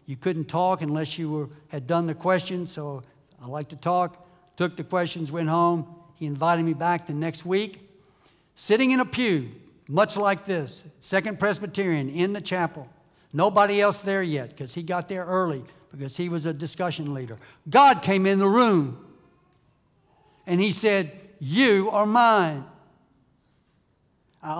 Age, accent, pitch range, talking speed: 60-79, American, 155-195 Hz, 160 wpm